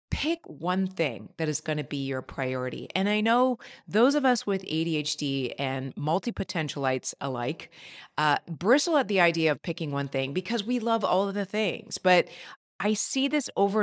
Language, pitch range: English, 150-230 Hz